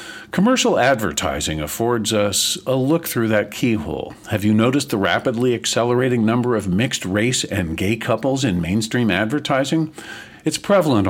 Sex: male